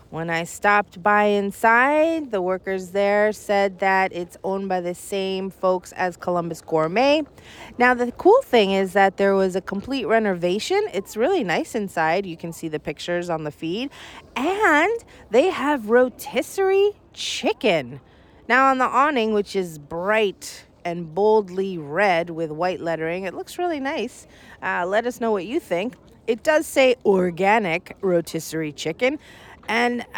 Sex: female